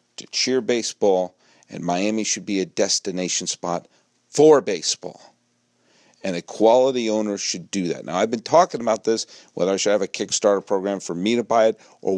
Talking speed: 185 wpm